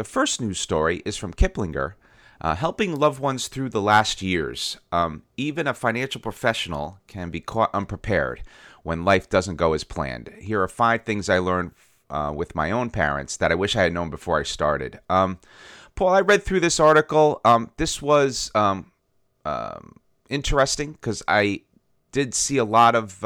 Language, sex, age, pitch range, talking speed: English, male, 30-49, 90-120 Hz, 180 wpm